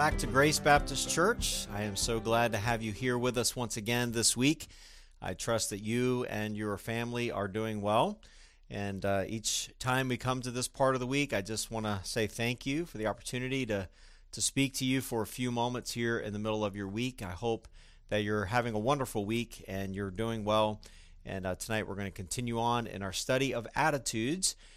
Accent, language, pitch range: American, English, 105-125 Hz